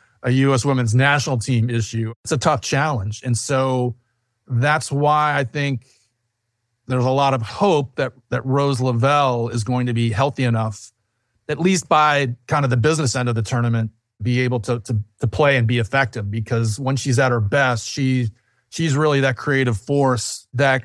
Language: English